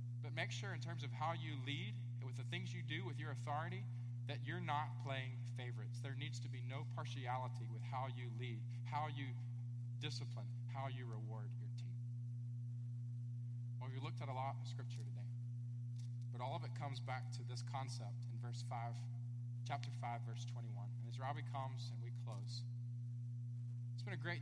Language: English